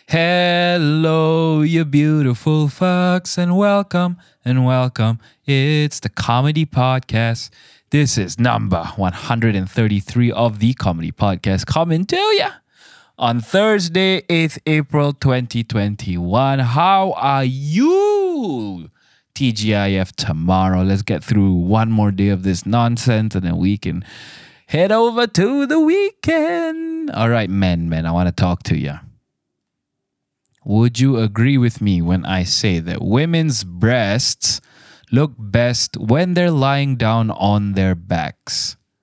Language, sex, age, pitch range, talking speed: English, male, 20-39, 105-160 Hz, 130 wpm